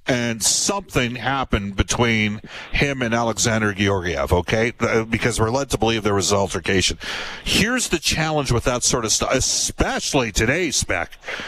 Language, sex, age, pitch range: English, male, 50-69, 120-170 Hz